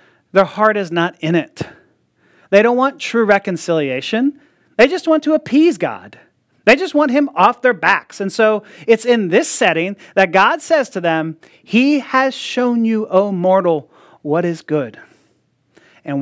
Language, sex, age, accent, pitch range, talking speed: English, male, 30-49, American, 155-220 Hz, 165 wpm